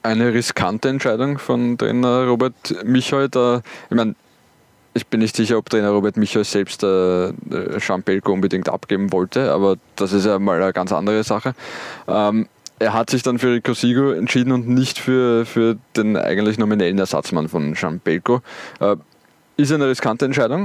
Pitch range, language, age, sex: 105-125 Hz, German, 20-39, male